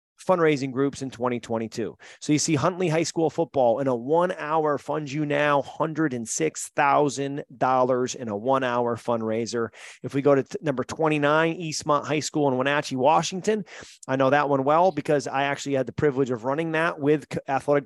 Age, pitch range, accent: 30-49, 125-150 Hz, American